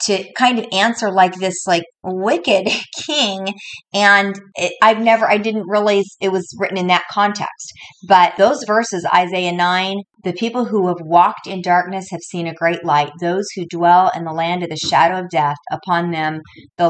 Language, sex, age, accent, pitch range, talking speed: English, female, 40-59, American, 165-205 Hz, 190 wpm